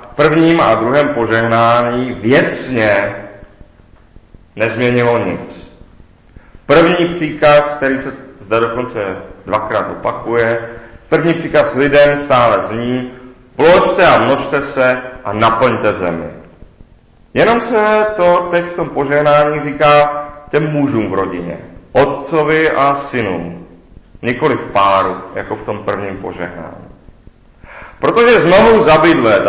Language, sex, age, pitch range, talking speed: Czech, male, 40-59, 110-145 Hz, 110 wpm